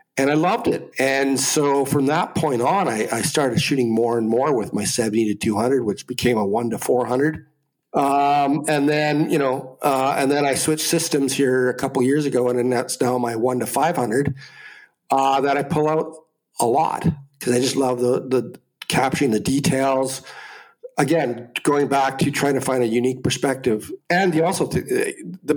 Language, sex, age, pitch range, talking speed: English, male, 50-69, 125-145 Hz, 195 wpm